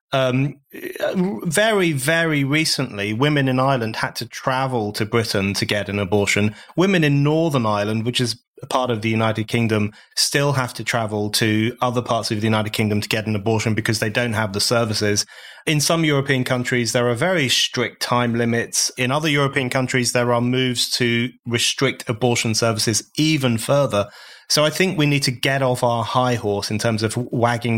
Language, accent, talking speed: English, British, 185 wpm